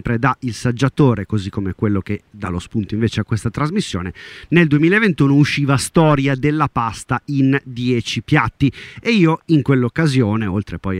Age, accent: 30-49, native